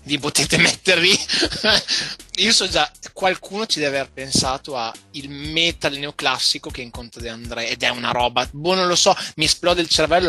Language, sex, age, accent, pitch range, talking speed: Italian, male, 20-39, native, 125-150 Hz, 180 wpm